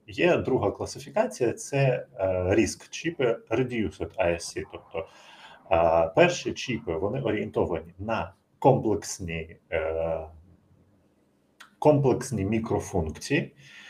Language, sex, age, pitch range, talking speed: Ukrainian, male, 30-49, 90-135 Hz, 80 wpm